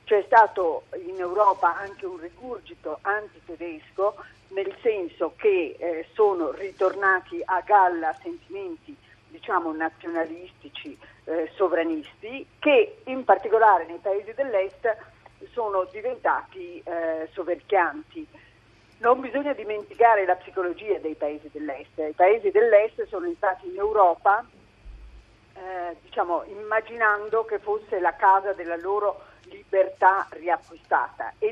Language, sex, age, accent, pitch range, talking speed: Italian, female, 50-69, native, 175-280 Hz, 110 wpm